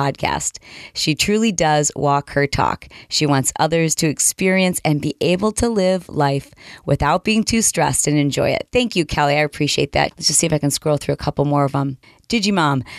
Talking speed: 210 wpm